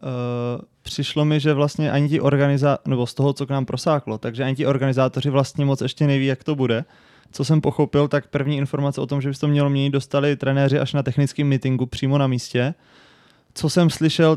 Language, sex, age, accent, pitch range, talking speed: Czech, male, 20-39, native, 130-145 Hz, 215 wpm